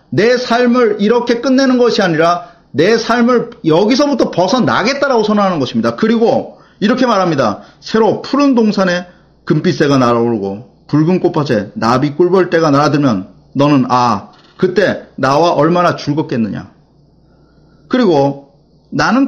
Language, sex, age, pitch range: Korean, male, 30-49, 130-215 Hz